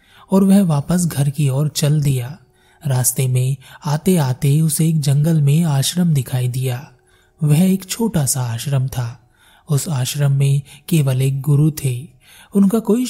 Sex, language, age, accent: male, Hindi, 30-49, native